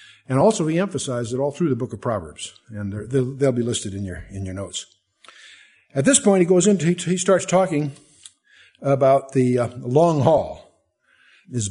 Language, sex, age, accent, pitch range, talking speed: English, male, 60-79, American, 120-155 Hz, 180 wpm